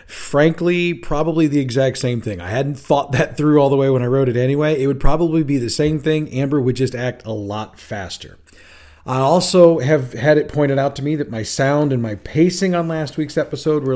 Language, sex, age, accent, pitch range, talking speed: English, male, 40-59, American, 125-160 Hz, 230 wpm